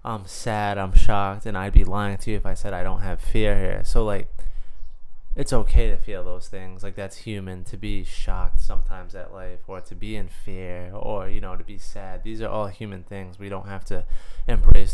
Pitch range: 95-105 Hz